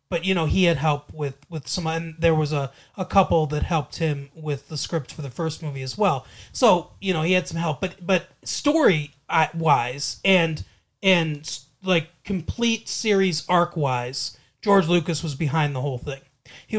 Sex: male